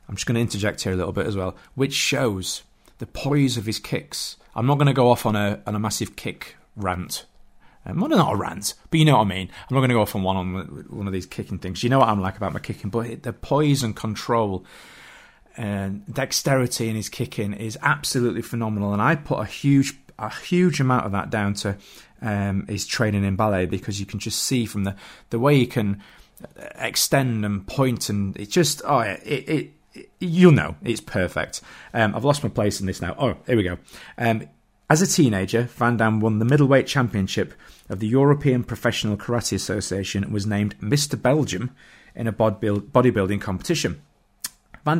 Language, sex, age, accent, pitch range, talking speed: English, male, 30-49, British, 100-130 Hz, 210 wpm